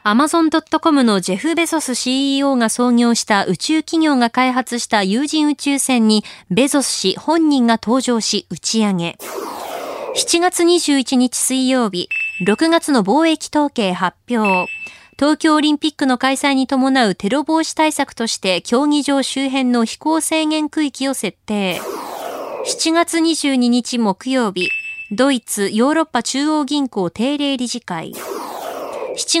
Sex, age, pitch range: female, 20-39, 200-290 Hz